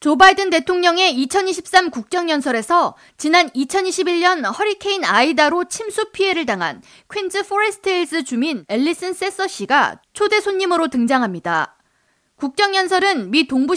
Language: Korean